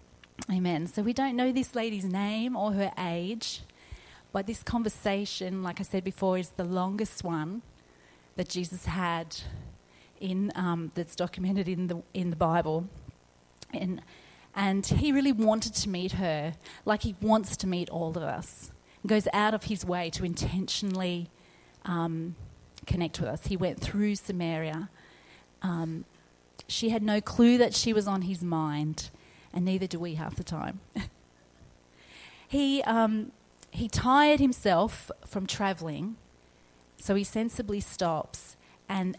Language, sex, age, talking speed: English, female, 30-49, 145 wpm